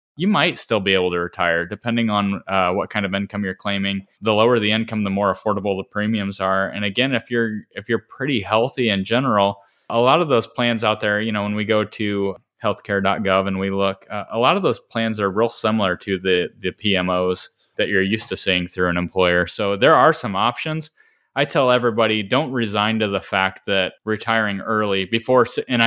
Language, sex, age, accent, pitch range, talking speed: English, male, 20-39, American, 95-115 Hz, 215 wpm